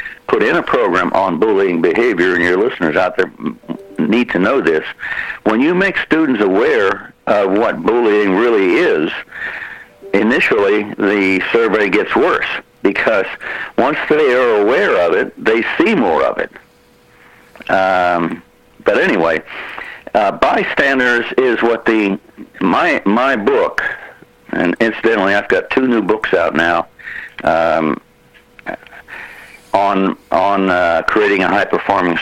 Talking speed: 130 wpm